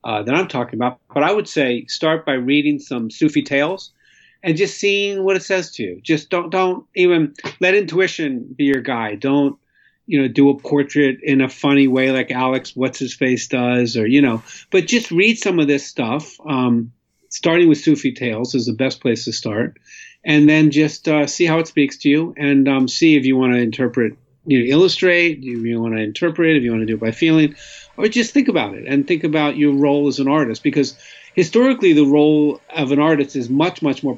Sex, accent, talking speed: male, American, 220 wpm